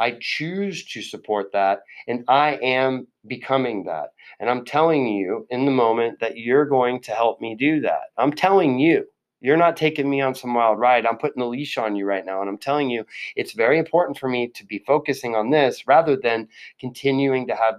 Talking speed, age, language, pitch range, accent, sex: 215 wpm, 30-49, English, 115-150 Hz, American, male